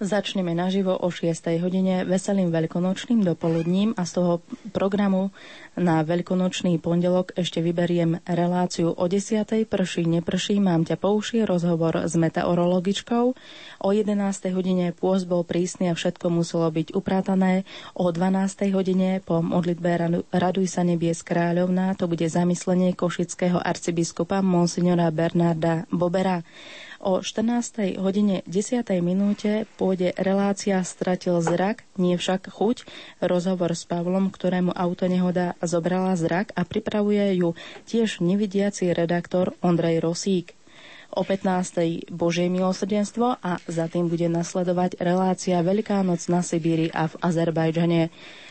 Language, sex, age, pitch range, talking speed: Slovak, female, 30-49, 170-195 Hz, 125 wpm